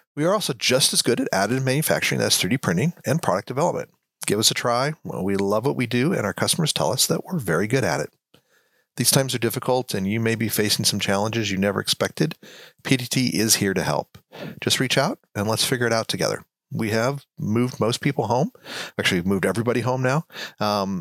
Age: 40-59